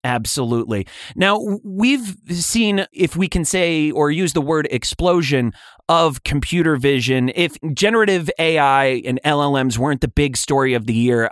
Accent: American